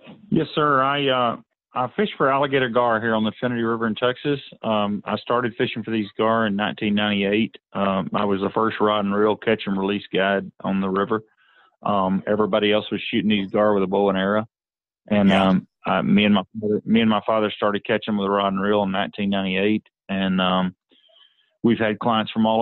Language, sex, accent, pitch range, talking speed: English, male, American, 100-115 Hz, 205 wpm